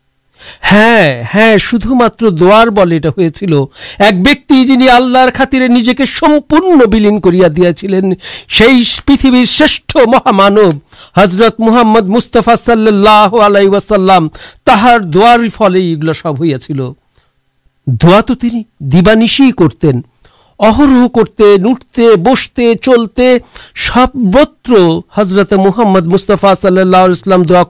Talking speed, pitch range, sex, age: 75 wpm, 155-225 Hz, male, 60-79